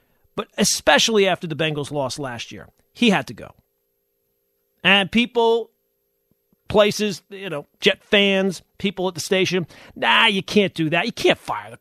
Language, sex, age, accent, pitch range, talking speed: English, male, 40-59, American, 165-235 Hz, 165 wpm